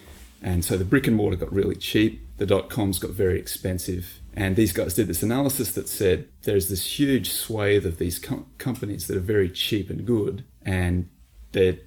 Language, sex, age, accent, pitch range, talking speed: English, male, 30-49, Australian, 90-100 Hz, 195 wpm